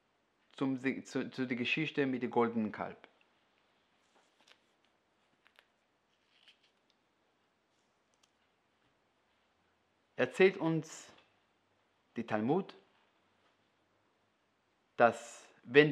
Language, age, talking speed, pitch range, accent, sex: German, 40-59, 55 wpm, 125-175 Hz, German, male